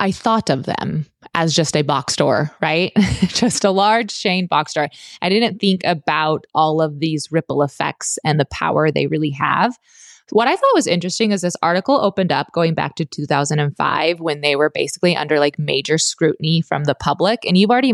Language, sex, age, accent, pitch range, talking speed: English, female, 20-39, American, 155-205 Hz, 195 wpm